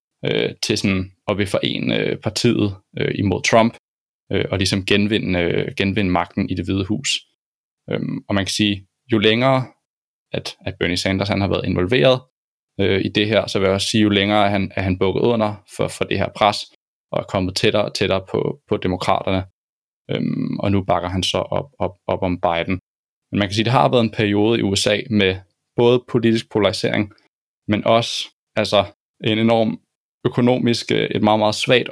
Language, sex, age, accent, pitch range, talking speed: Danish, male, 20-39, native, 95-115 Hz, 200 wpm